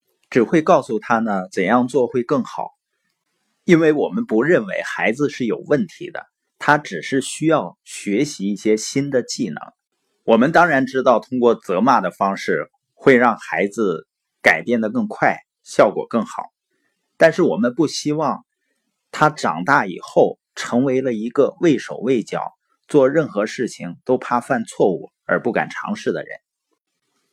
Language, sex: Chinese, male